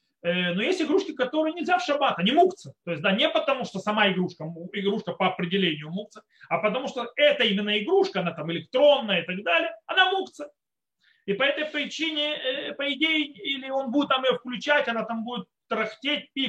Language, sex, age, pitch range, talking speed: Russian, male, 30-49, 180-280 Hz, 185 wpm